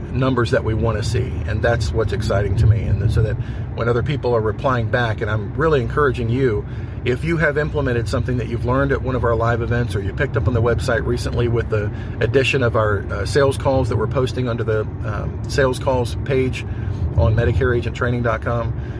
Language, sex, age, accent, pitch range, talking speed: English, male, 40-59, American, 110-125 Hz, 210 wpm